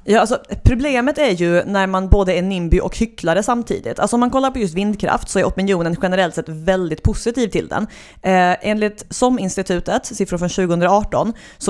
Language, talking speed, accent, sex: English, 185 wpm, Swedish, female